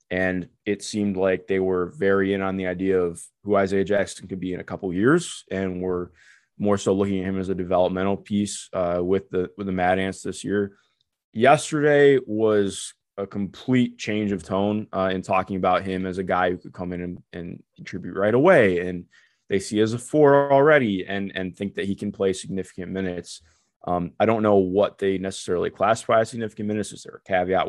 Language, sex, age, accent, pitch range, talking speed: English, male, 20-39, American, 95-105 Hz, 210 wpm